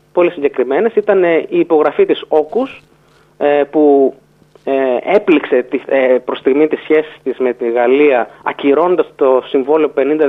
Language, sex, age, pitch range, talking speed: Greek, male, 30-49, 130-190 Hz, 130 wpm